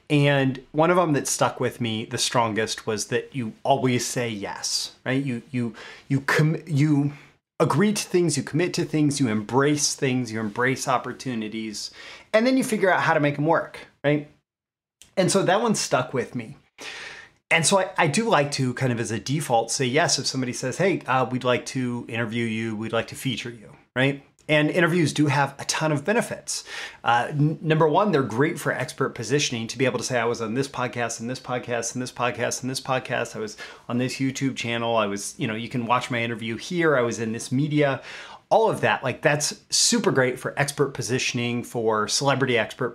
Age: 30-49